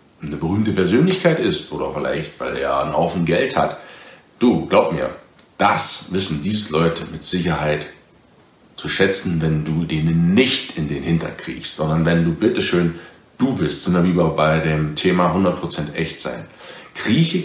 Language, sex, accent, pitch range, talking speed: German, male, German, 85-115 Hz, 160 wpm